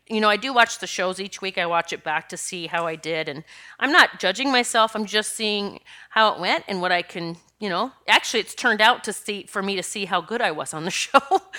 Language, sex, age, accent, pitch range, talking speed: English, female, 30-49, American, 180-250 Hz, 270 wpm